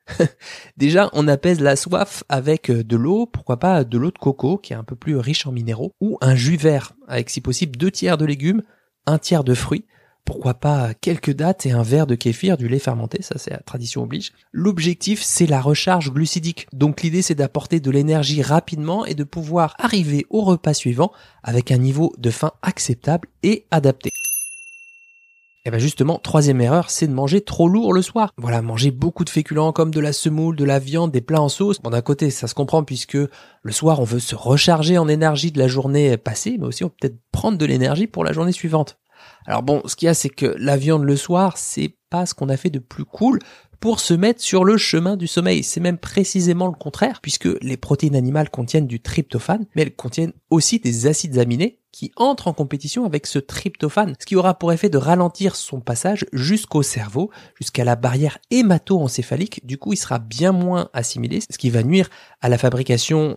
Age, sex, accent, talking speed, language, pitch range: 20-39, male, French, 210 wpm, French, 130-180 Hz